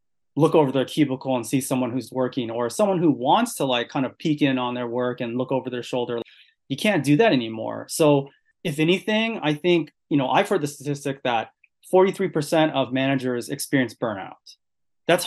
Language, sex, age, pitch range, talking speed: English, male, 30-49, 130-165 Hz, 195 wpm